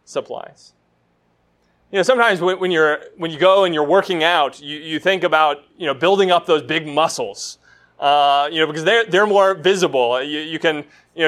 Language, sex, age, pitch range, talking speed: English, male, 20-39, 150-225 Hz, 195 wpm